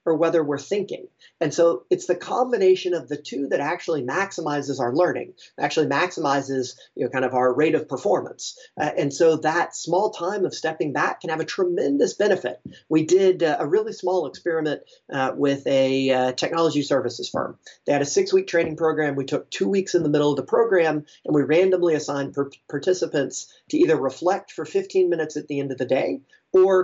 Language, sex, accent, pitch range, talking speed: English, male, American, 145-185 Hz, 195 wpm